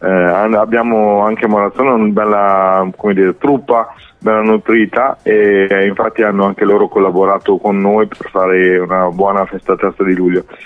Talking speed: 150 wpm